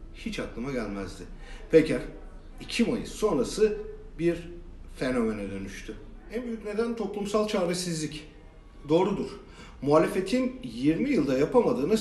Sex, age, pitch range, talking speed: male, 50-69, 130-215 Hz, 100 wpm